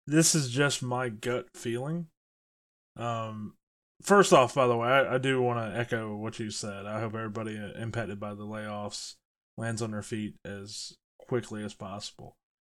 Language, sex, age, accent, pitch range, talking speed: English, male, 20-39, American, 105-120 Hz, 170 wpm